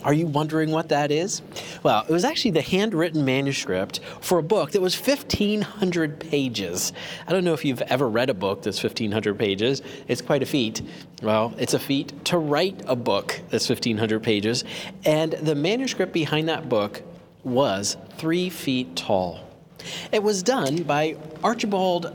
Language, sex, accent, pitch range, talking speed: English, male, American, 130-175 Hz, 170 wpm